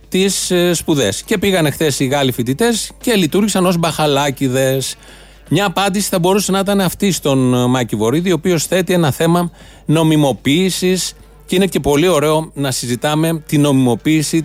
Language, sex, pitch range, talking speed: Greek, male, 135-185 Hz, 150 wpm